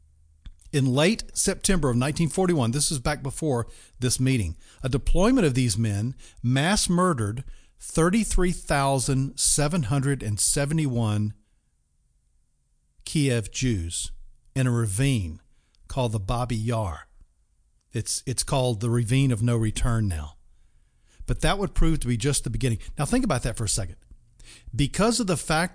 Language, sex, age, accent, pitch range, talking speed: English, male, 40-59, American, 110-160 Hz, 135 wpm